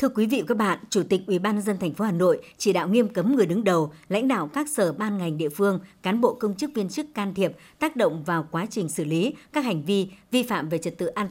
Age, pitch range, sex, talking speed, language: 60-79, 180-220 Hz, male, 270 wpm, Vietnamese